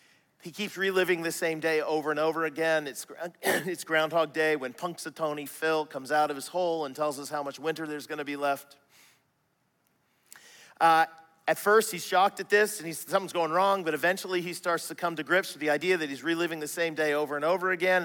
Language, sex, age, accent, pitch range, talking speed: English, male, 40-59, American, 160-205 Hz, 220 wpm